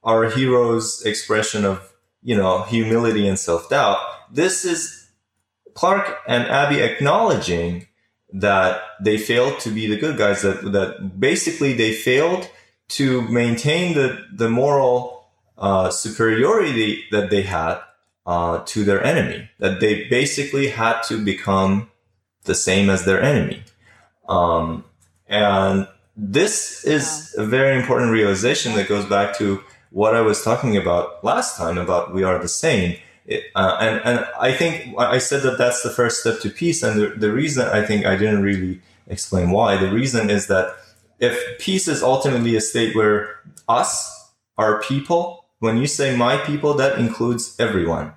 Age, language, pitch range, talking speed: 20-39, English, 100-125 Hz, 155 wpm